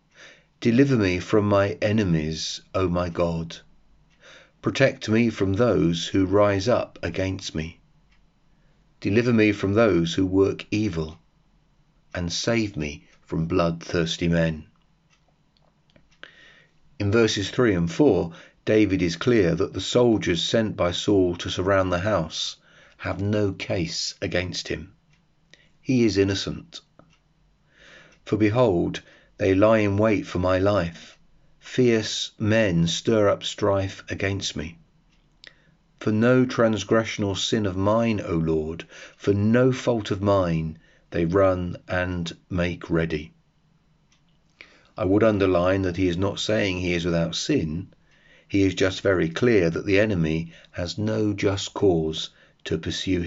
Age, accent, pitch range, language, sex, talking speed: 40-59, British, 85-110 Hz, English, male, 130 wpm